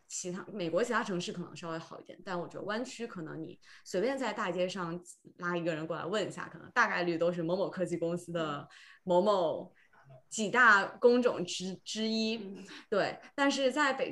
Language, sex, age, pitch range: Chinese, female, 20-39, 170-205 Hz